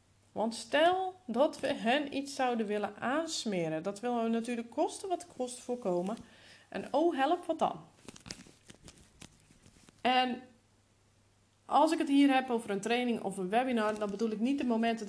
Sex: female